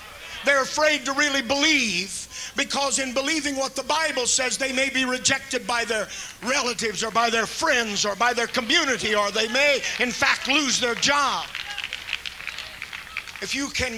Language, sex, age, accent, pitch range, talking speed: English, male, 50-69, American, 230-285 Hz, 165 wpm